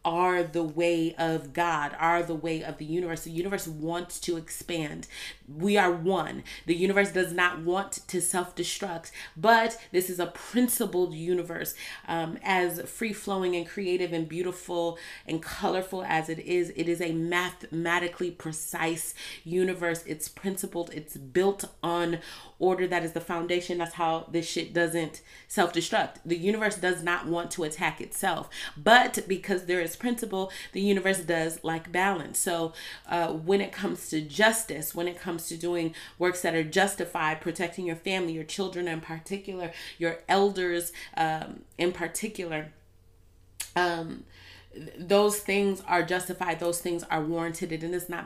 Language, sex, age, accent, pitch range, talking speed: English, female, 30-49, American, 165-185 Hz, 155 wpm